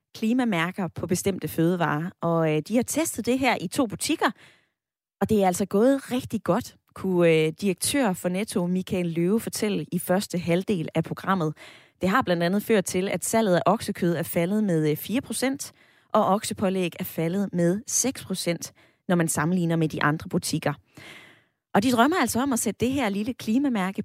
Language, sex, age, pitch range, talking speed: Danish, female, 20-39, 175-230 Hz, 175 wpm